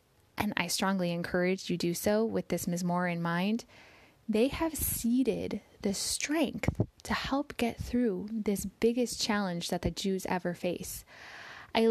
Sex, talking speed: female, 155 wpm